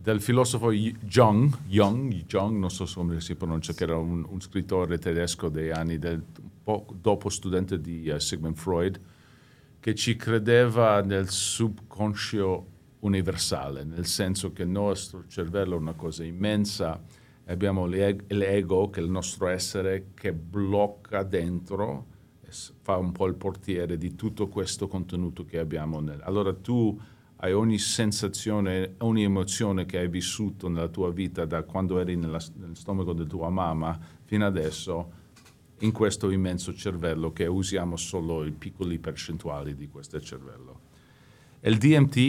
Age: 50-69